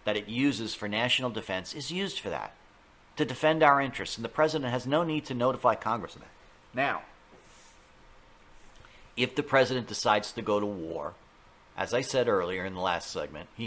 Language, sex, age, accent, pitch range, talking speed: English, male, 50-69, American, 110-155 Hz, 190 wpm